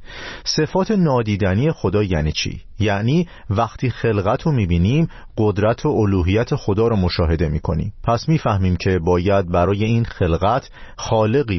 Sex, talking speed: male, 130 wpm